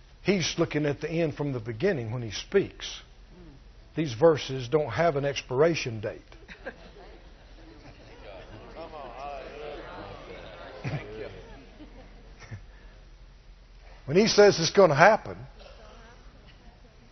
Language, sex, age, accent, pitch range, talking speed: English, male, 60-79, American, 145-200 Hz, 90 wpm